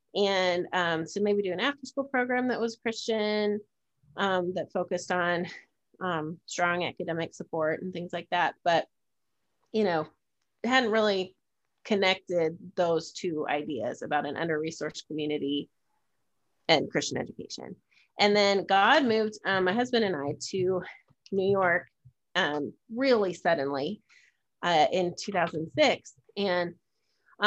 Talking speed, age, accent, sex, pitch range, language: 130 wpm, 30-49, American, female, 170-200 Hz, English